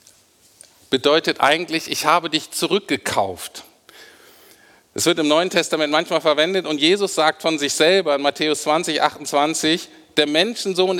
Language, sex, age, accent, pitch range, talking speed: German, male, 50-69, German, 130-175 Hz, 135 wpm